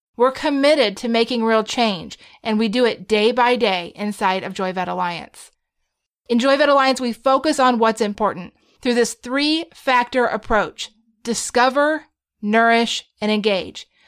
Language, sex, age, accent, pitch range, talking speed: English, female, 30-49, American, 225-275 Hz, 140 wpm